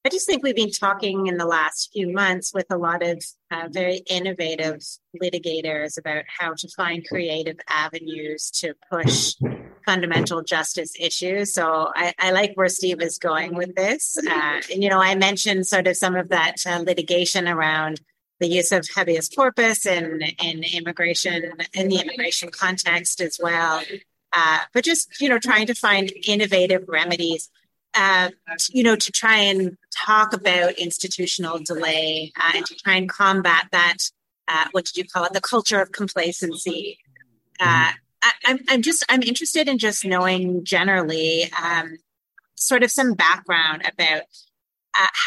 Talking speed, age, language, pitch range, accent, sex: 165 wpm, 30-49, English, 165-195 Hz, American, female